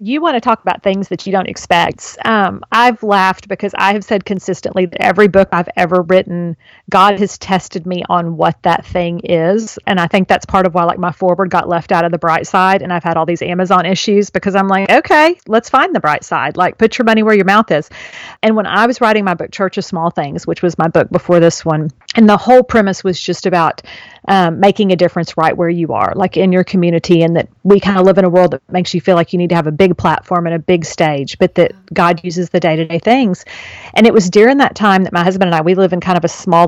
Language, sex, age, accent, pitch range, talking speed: English, female, 40-59, American, 170-200 Hz, 265 wpm